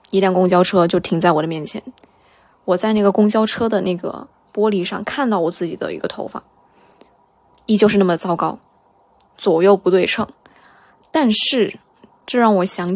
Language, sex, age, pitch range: Chinese, female, 20-39, 180-215 Hz